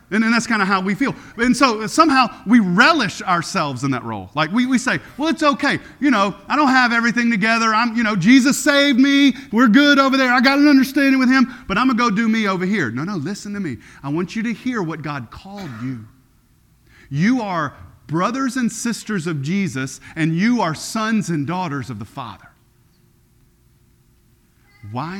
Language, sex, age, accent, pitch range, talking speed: English, male, 40-59, American, 155-255 Hz, 205 wpm